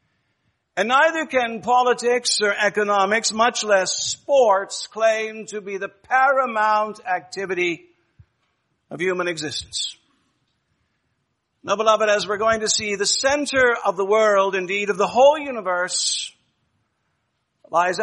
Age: 60-79